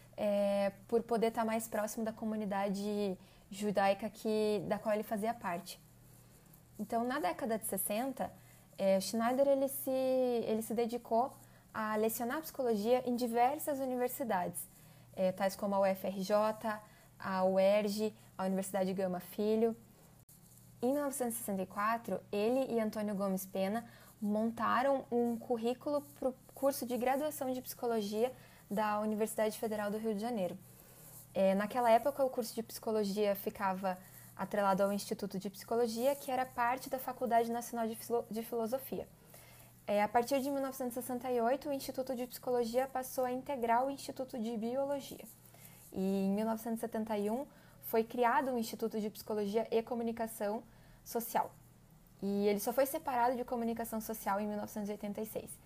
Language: Portuguese